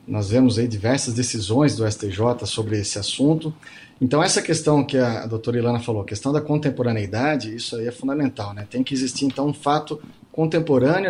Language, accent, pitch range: Portuguese, Brazilian, 120-145 Hz